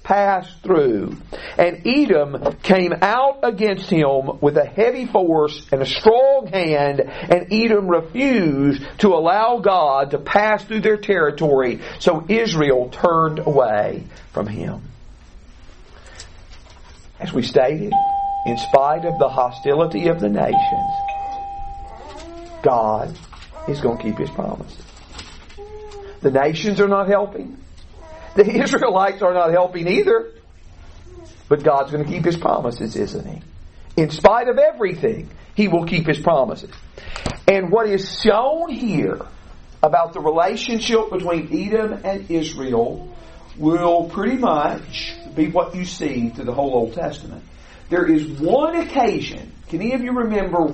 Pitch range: 150-230 Hz